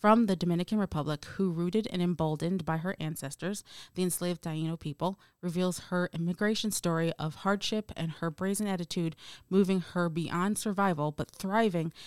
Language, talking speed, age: English, 155 wpm, 30-49